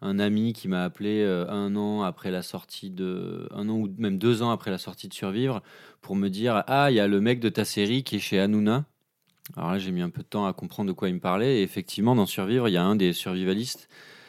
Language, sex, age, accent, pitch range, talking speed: French, male, 30-49, French, 90-115 Hz, 245 wpm